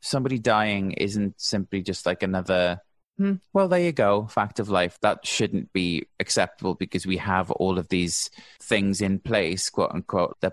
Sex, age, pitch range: male, 30-49, 95-115 Hz